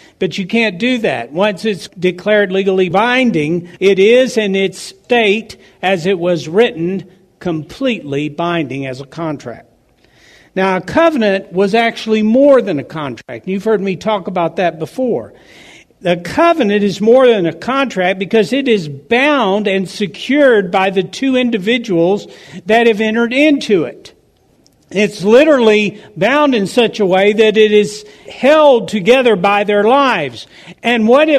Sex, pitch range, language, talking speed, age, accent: male, 195-255 Hz, English, 150 wpm, 60-79, American